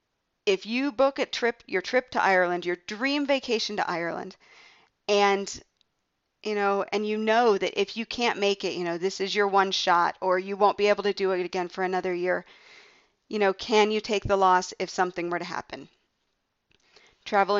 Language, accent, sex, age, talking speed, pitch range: English, American, female, 40-59, 200 wpm, 190-250 Hz